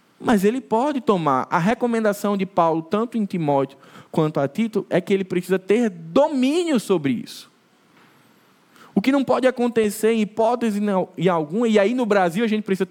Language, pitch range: Portuguese, 175-225 Hz